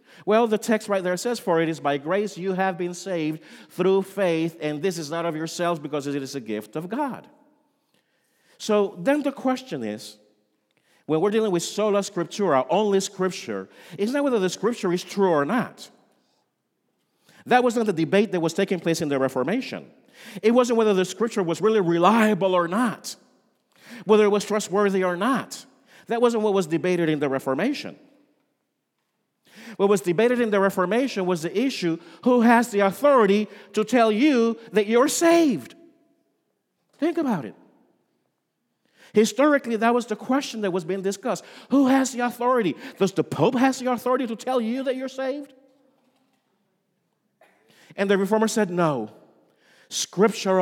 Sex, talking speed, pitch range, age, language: male, 165 wpm, 170-245 Hz, 50-69, English